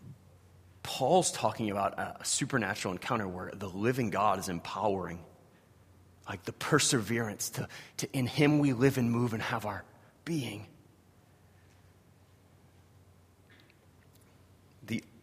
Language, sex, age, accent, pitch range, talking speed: English, male, 30-49, American, 95-125 Hz, 110 wpm